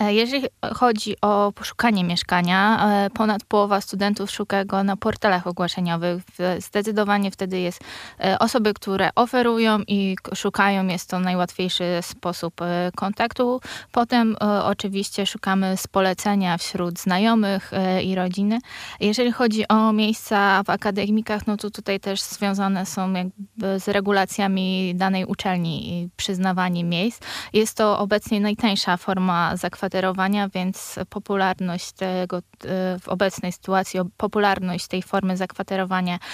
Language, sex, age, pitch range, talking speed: Polish, female, 20-39, 185-215 Hz, 115 wpm